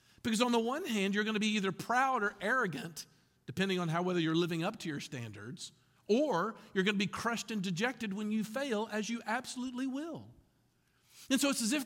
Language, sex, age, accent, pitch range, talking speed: English, male, 50-69, American, 175-235 Hz, 220 wpm